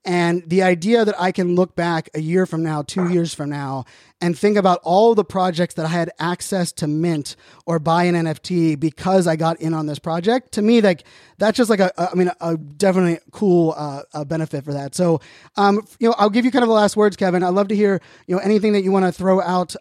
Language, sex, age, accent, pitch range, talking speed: English, male, 20-39, American, 165-190 Hz, 250 wpm